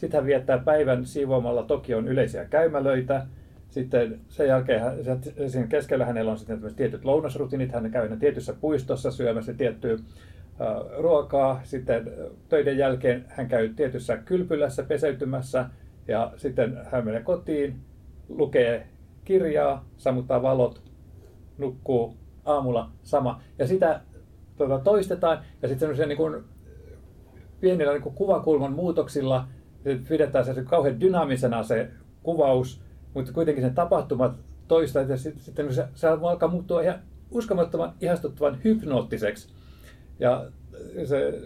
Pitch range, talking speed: 120-150 Hz, 115 wpm